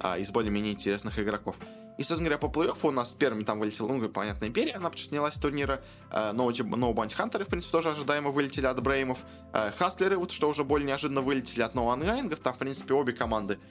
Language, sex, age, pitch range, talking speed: Russian, male, 20-39, 110-140 Hz, 200 wpm